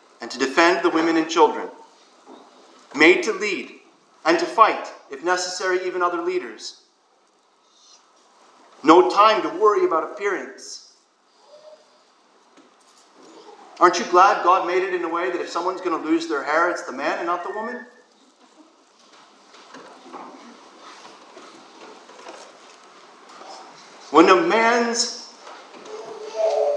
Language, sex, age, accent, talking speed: English, male, 40-59, American, 115 wpm